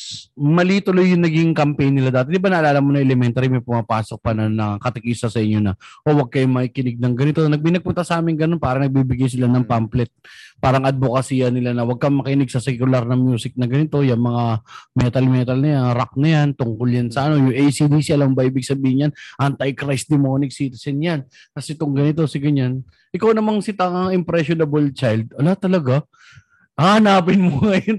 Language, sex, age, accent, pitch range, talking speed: Filipino, male, 20-39, native, 125-175 Hz, 190 wpm